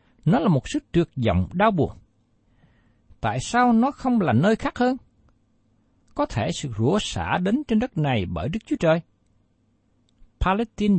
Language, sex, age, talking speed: Vietnamese, male, 60-79, 165 wpm